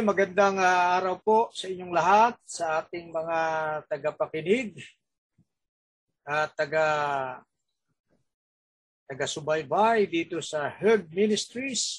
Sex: male